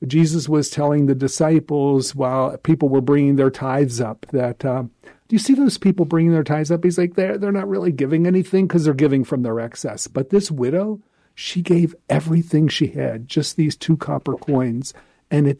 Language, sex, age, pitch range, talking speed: English, male, 50-69, 135-180 Hz, 200 wpm